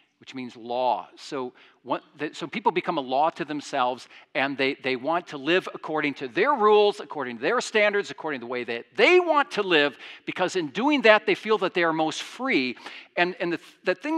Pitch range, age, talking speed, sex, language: 140-220 Hz, 50-69, 210 wpm, male, English